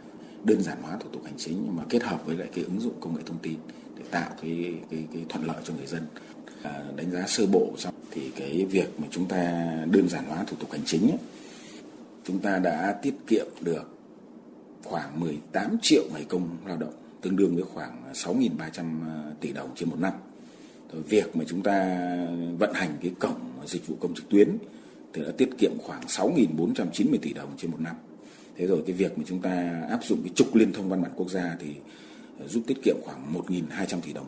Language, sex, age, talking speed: Vietnamese, male, 30-49, 215 wpm